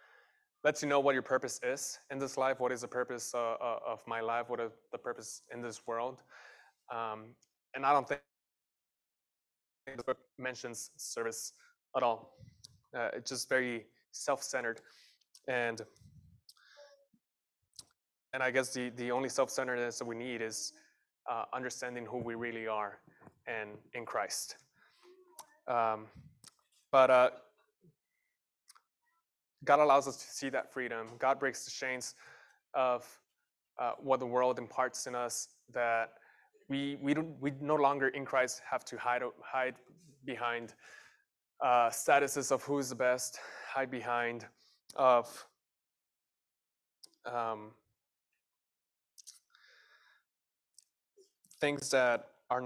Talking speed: 125 wpm